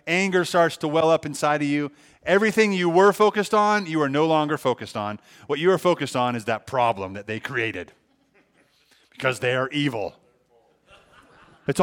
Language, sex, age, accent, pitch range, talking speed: English, male, 30-49, American, 125-180 Hz, 180 wpm